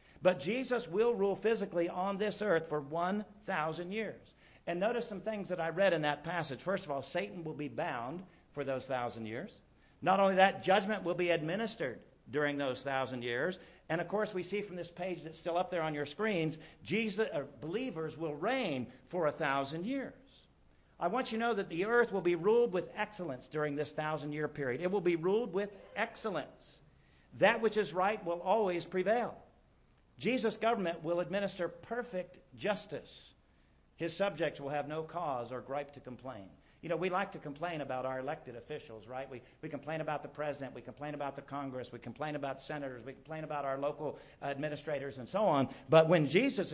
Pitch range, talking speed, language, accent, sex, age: 145-200 Hz, 195 wpm, English, American, male, 50-69